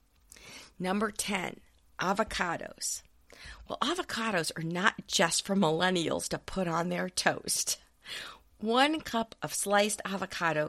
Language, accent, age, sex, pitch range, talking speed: English, American, 50-69, female, 160-215 Hz, 110 wpm